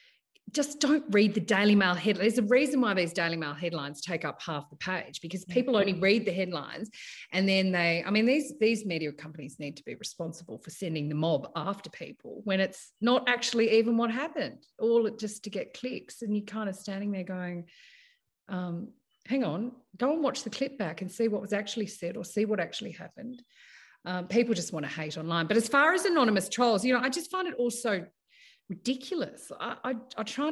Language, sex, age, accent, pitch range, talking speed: English, female, 30-49, Australian, 180-255 Hz, 215 wpm